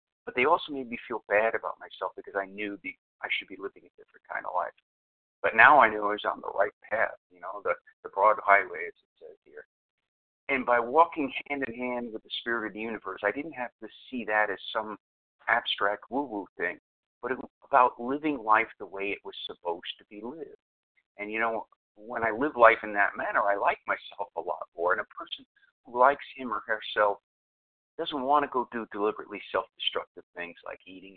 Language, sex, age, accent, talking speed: English, male, 50-69, American, 220 wpm